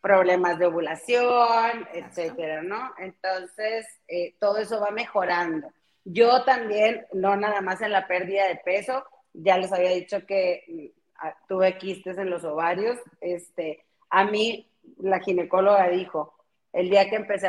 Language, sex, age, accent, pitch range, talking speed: Spanish, female, 30-49, Mexican, 185-230 Hz, 140 wpm